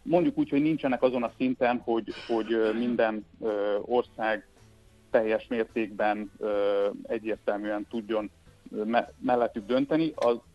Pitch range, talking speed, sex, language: 105-120 Hz, 100 wpm, male, Hungarian